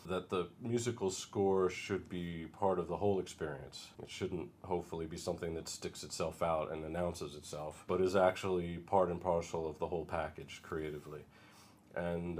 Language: English